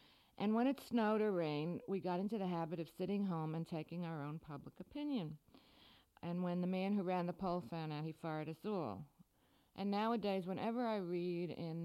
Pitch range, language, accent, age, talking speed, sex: 160-205 Hz, English, American, 60-79, 205 wpm, female